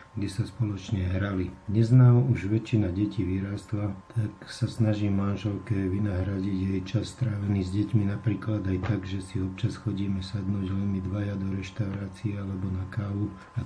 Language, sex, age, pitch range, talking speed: Slovak, male, 50-69, 100-115 Hz, 155 wpm